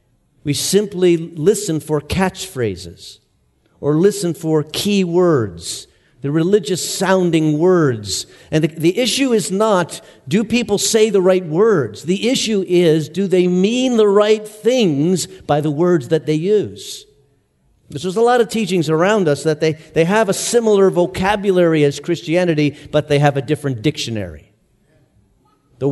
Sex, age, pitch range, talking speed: male, 50-69, 145-185 Hz, 145 wpm